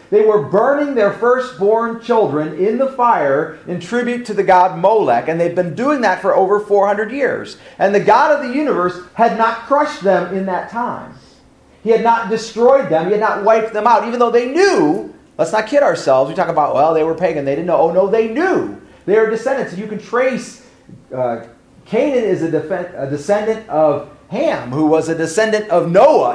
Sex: male